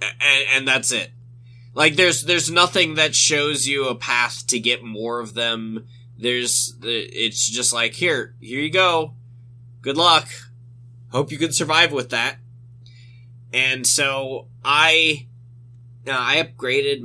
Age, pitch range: 20-39, 115-125 Hz